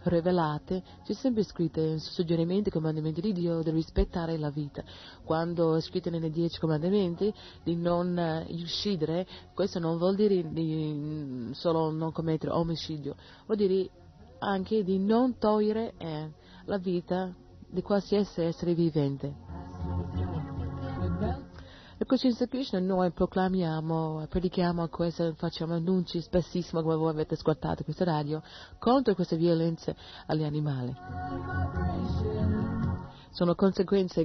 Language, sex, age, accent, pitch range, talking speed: Italian, female, 30-49, native, 150-185 Hz, 115 wpm